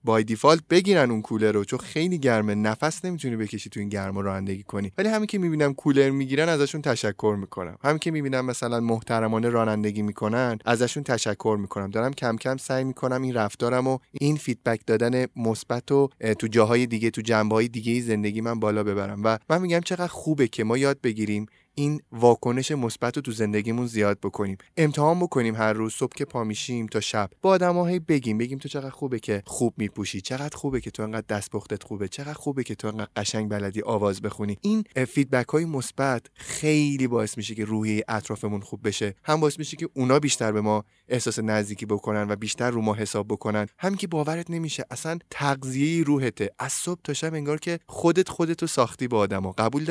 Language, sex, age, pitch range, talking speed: Persian, male, 20-39, 110-145 Hz, 190 wpm